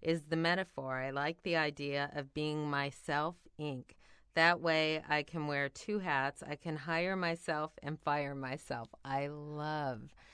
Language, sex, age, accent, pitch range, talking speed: English, female, 30-49, American, 135-155 Hz, 155 wpm